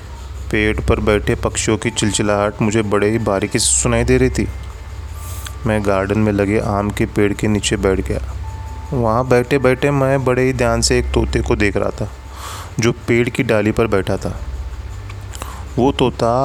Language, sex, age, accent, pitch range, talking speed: Hindi, male, 30-49, native, 95-115 Hz, 180 wpm